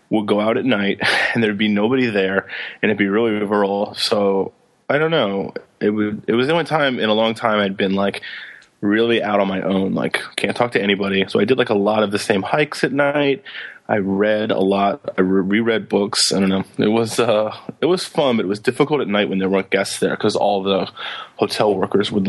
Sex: male